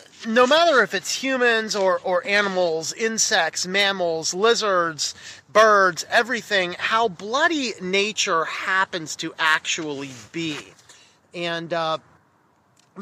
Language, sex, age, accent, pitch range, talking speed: English, male, 30-49, American, 165-220 Hz, 100 wpm